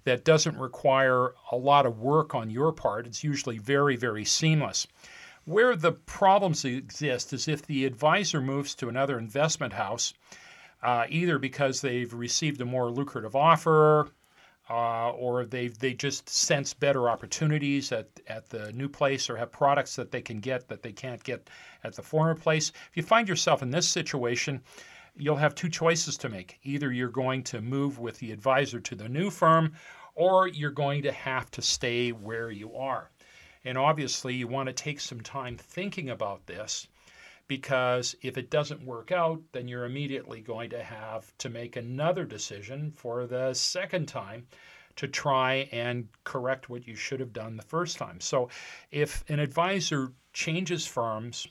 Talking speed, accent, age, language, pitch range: 170 wpm, American, 40-59, English, 125-150 Hz